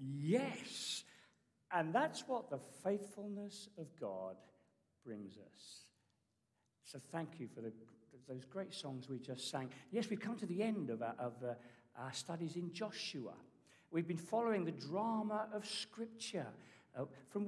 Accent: British